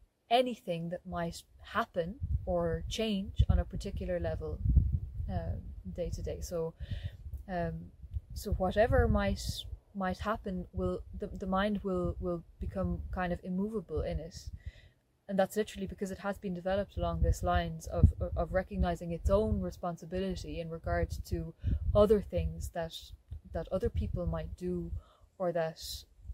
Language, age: English, 20-39